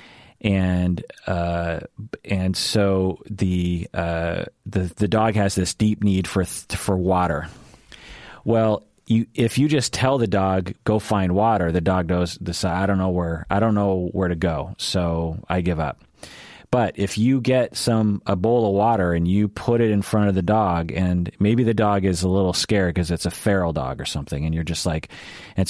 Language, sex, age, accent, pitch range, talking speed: English, male, 30-49, American, 90-110 Hz, 195 wpm